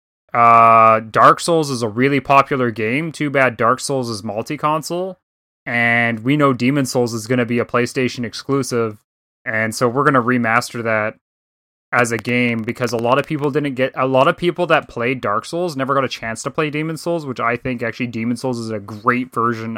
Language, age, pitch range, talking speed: English, 20-39, 110-130 Hz, 210 wpm